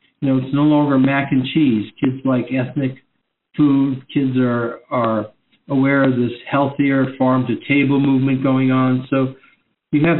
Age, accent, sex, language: 60-79, American, male, English